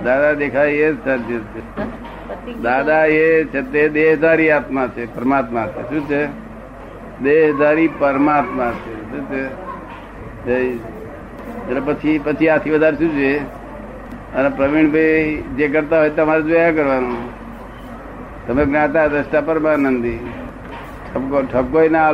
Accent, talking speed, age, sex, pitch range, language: native, 50 wpm, 60-79, male, 135-160 Hz, Gujarati